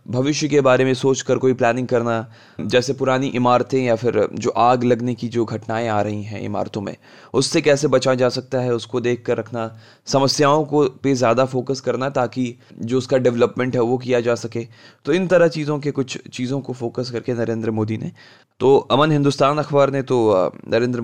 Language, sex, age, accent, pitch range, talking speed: Hindi, male, 20-39, native, 120-140 Hz, 195 wpm